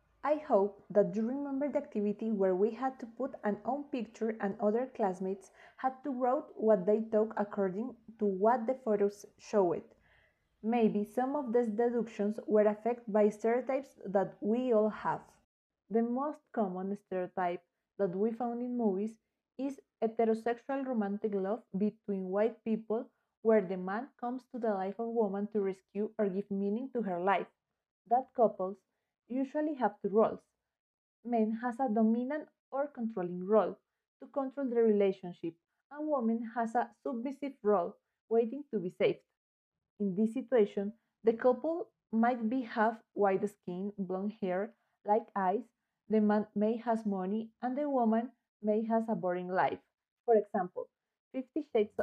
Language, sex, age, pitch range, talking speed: English, female, 20-39, 205-245 Hz, 155 wpm